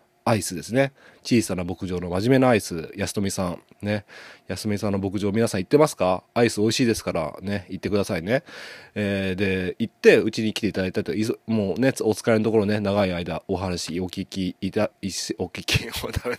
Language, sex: Japanese, male